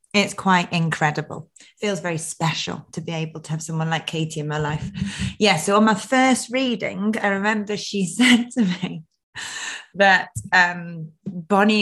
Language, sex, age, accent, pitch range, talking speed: English, female, 20-39, British, 170-215 Hz, 160 wpm